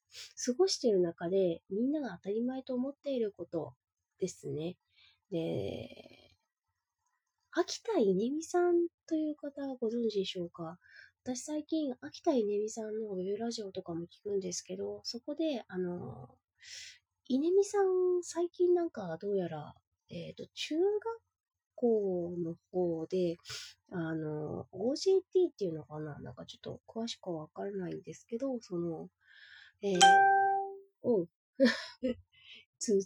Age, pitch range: 20-39, 170-285 Hz